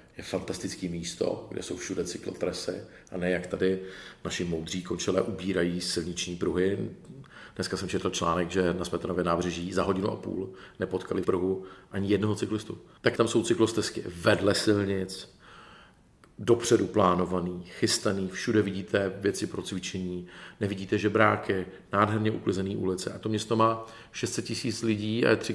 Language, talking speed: Czech, 150 wpm